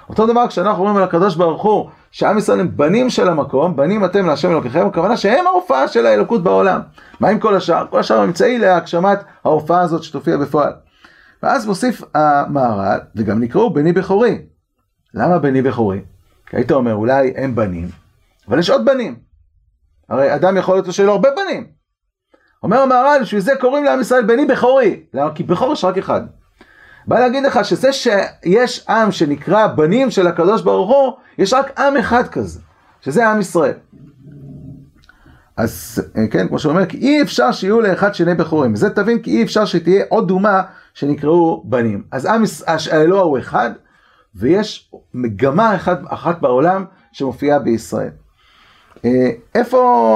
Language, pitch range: Hebrew, 135-215 Hz